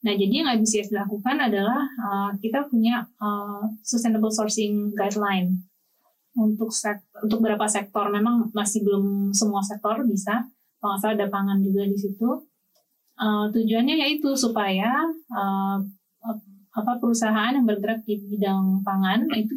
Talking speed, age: 135 wpm, 20-39